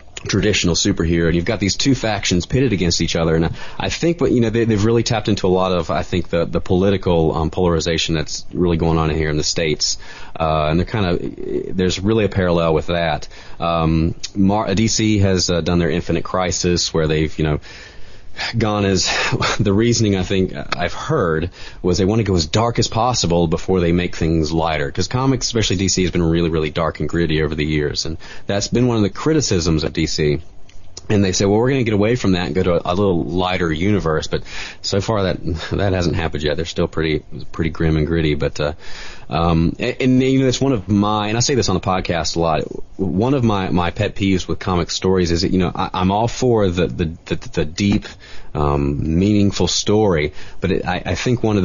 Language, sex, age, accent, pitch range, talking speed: English, male, 30-49, American, 85-105 Hz, 225 wpm